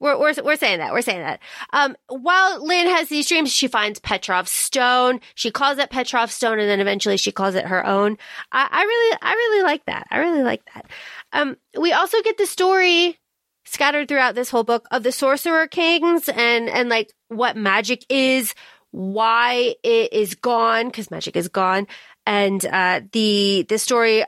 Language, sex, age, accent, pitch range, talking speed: English, female, 30-49, American, 220-290 Hz, 190 wpm